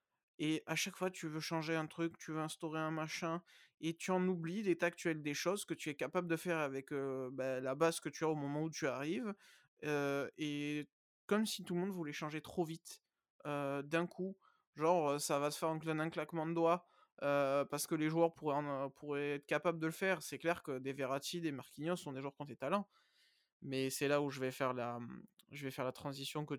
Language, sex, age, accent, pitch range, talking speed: French, male, 20-39, French, 140-170 Hz, 240 wpm